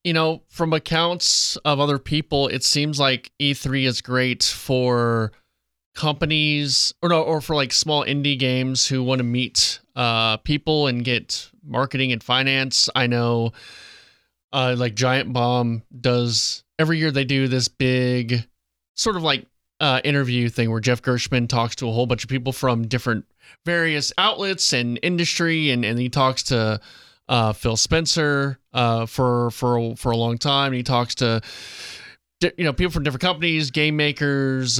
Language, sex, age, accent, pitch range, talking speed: English, male, 20-39, American, 120-150 Hz, 165 wpm